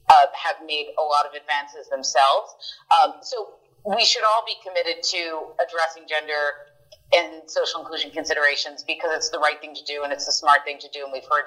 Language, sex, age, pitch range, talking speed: English, female, 30-49, 150-220 Hz, 205 wpm